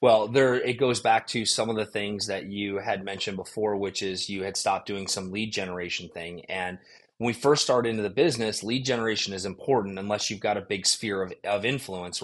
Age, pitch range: 30-49, 105-130 Hz